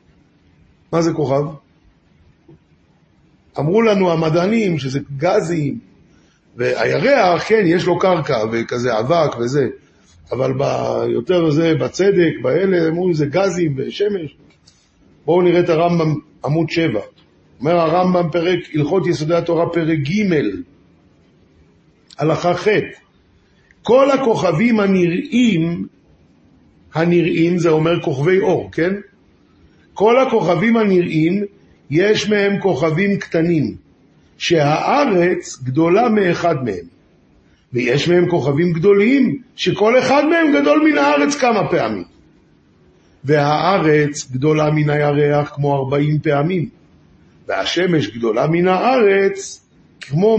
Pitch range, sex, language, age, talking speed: 150-195 Hz, male, Hebrew, 50-69, 100 wpm